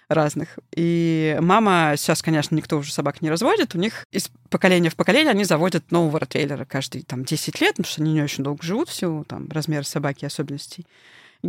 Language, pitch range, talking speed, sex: Russian, 155-195 Hz, 190 wpm, female